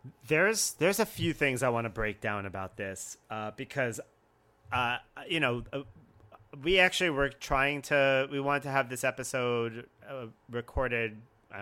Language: English